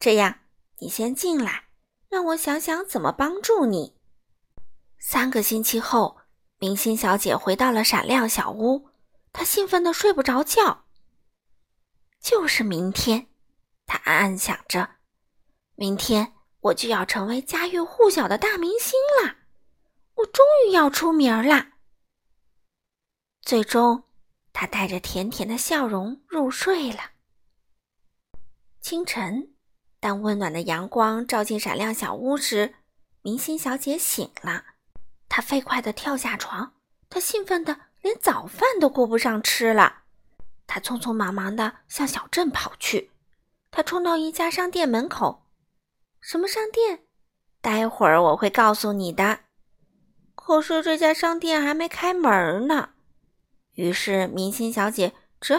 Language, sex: Chinese, female